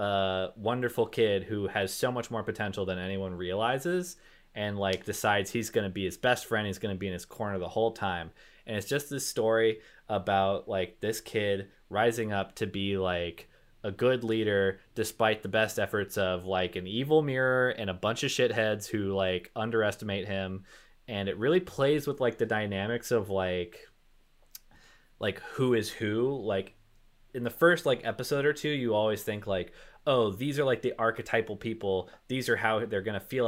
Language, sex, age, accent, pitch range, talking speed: English, male, 20-39, American, 95-115 Hz, 190 wpm